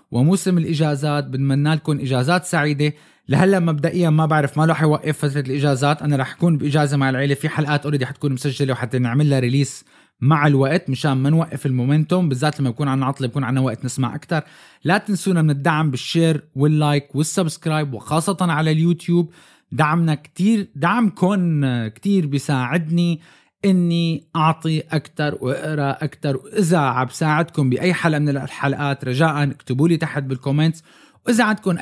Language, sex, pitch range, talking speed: Arabic, male, 140-175 Hz, 150 wpm